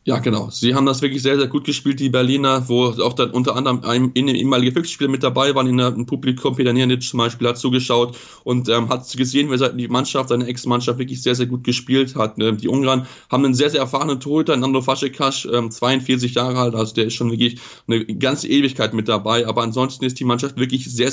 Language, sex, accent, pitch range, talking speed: German, male, German, 120-135 Hz, 225 wpm